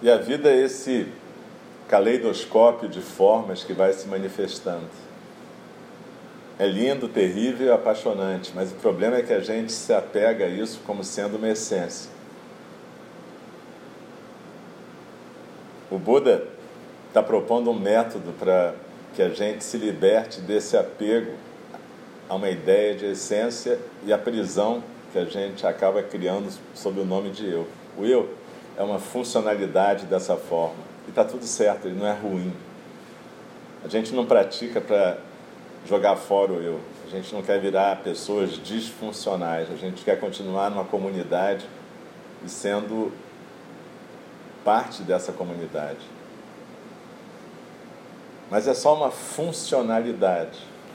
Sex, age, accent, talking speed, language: male, 40-59, Brazilian, 130 wpm, Portuguese